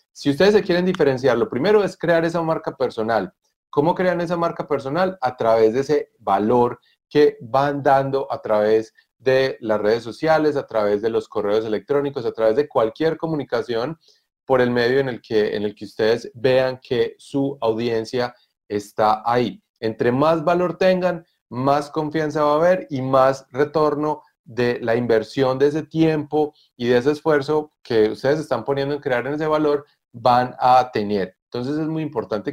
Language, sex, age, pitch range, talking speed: Spanish, male, 30-49, 120-155 Hz, 175 wpm